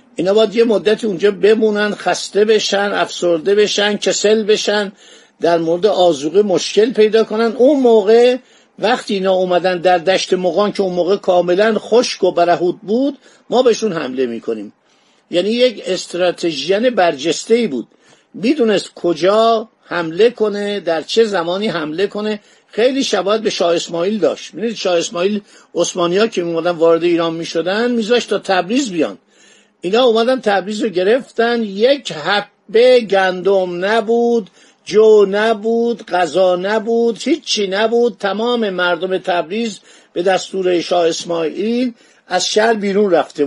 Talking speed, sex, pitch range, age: 135 wpm, male, 175-230 Hz, 50-69